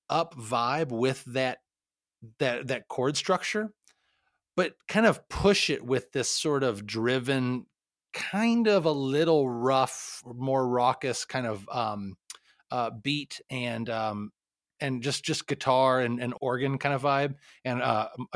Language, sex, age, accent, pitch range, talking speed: English, male, 30-49, American, 120-155 Hz, 145 wpm